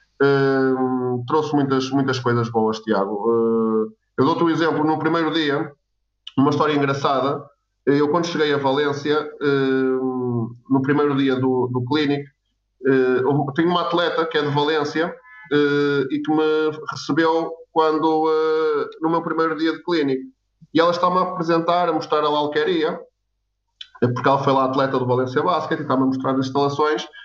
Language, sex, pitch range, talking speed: Portuguese, male, 130-170 Hz, 170 wpm